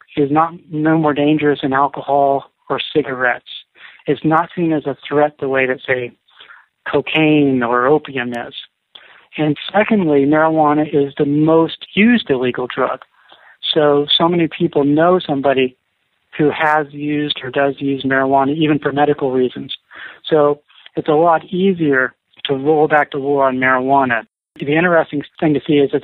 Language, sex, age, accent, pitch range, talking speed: English, male, 40-59, American, 135-155 Hz, 155 wpm